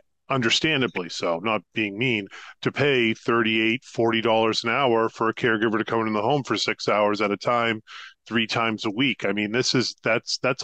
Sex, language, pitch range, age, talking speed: male, English, 110-125 Hz, 40-59, 190 wpm